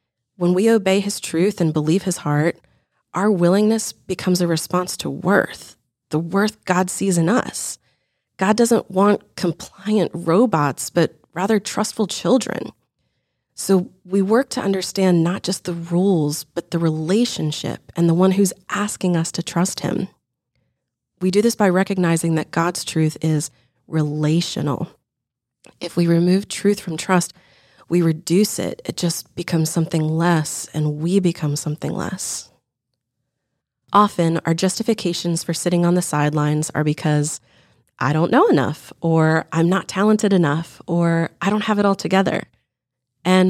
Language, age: English, 30-49